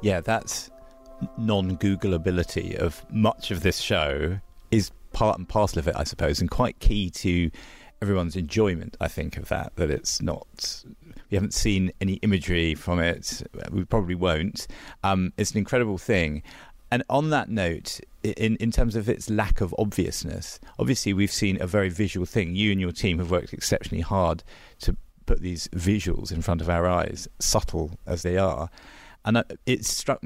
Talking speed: 175 wpm